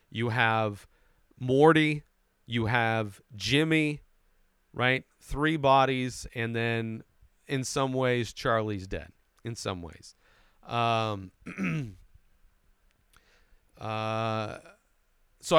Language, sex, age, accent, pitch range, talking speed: English, male, 40-59, American, 95-125 Hz, 85 wpm